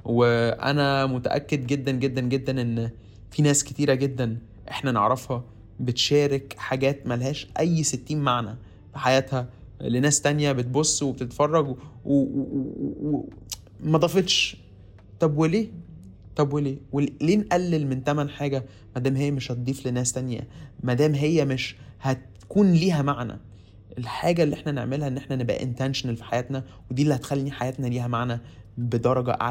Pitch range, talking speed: 120-140 Hz, 140 wpm